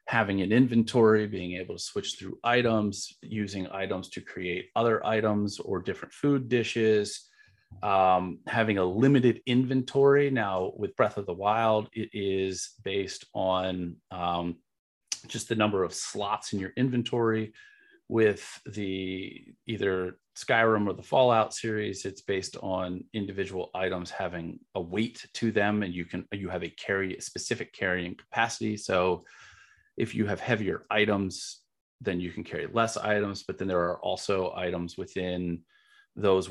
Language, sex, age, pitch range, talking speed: English, male, 30-49, 90-110 Hz, 150 wpm